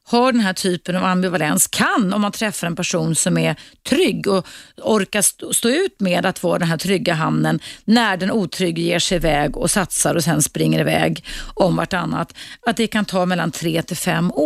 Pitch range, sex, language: 170-230 Hz, female, Swedish